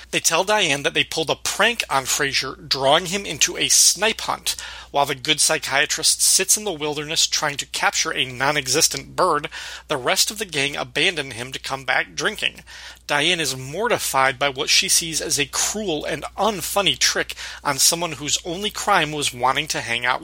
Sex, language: male, English